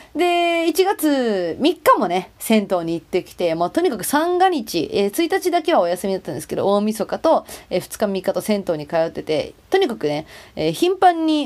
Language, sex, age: Japanese, female, 30-49